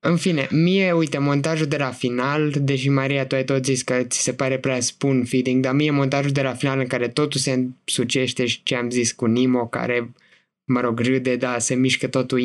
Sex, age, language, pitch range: male, 20-39, Romanian, 130-165 Hz